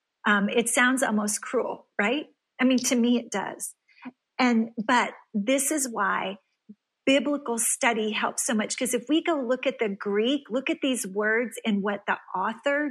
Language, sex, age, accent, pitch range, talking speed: English, female, 40-59, American, 210-255 Hz, 175 wpm